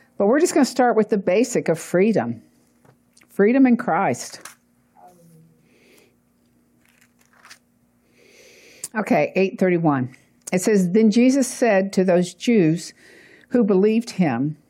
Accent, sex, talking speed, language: American, female, 110 wpm, English